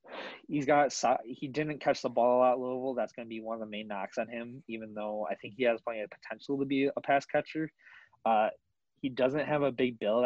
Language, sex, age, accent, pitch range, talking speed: English, male, 20-39, American, 110-130 Hz, 250 wpm